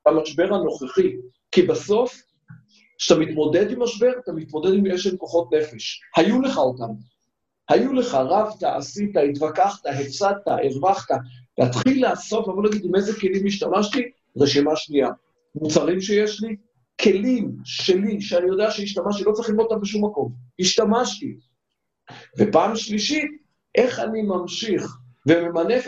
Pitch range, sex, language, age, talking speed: 160-220 Hz, male, Hebrew, 50-69, 130 wpm